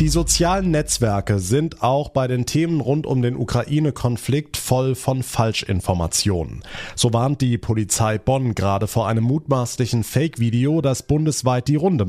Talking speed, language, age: 145 wpm, German, 30-49